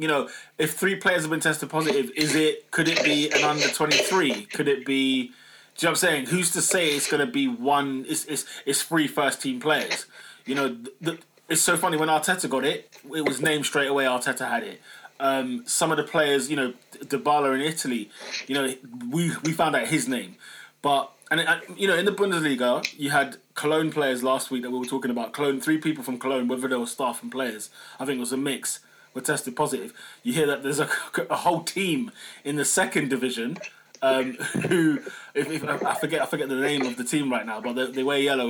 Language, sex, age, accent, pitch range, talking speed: English, male, 20-39, British, 135-170 Hz, 230 wpm